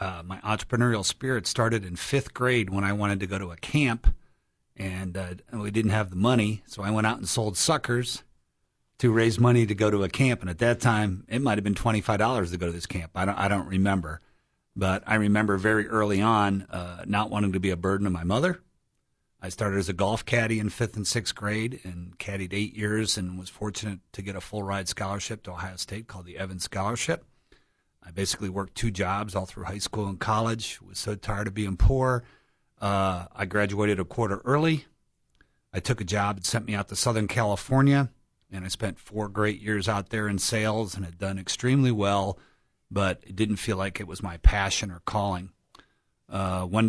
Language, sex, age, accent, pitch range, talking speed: English, male, 40-59, American, 95-115 Hz, 210 wpm